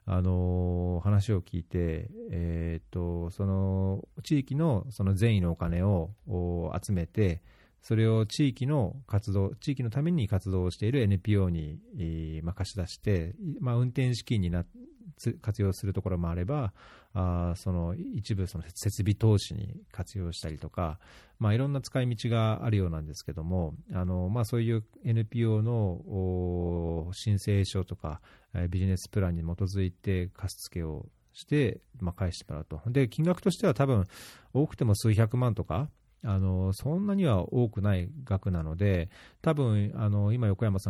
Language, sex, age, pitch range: Japanese, male, 40-59, 90-115 Hz